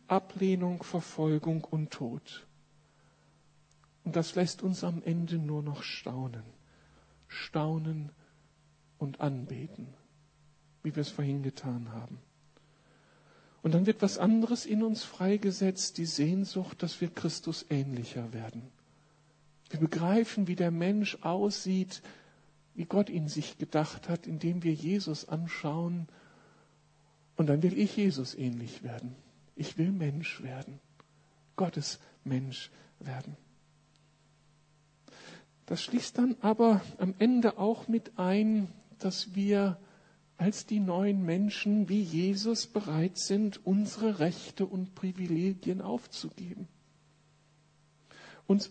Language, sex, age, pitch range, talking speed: German, male, 60-79, 150-195 Hz, 115 wpm